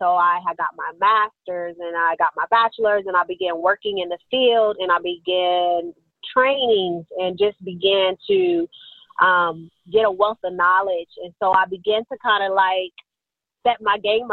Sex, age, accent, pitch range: female, 30-49, American, 185-230 Hz